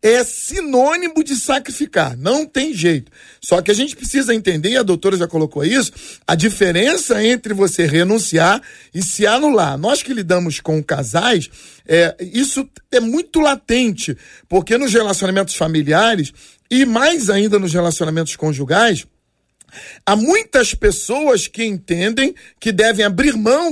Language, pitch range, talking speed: Portuguese, 185-250 Hz, 140 wpm